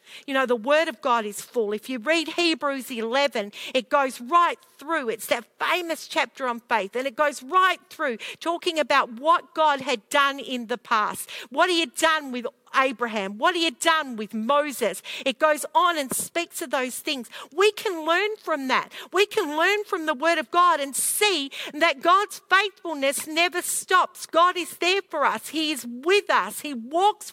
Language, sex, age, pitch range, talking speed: English, female, 50-69, 245-345 Hz, 195 wpm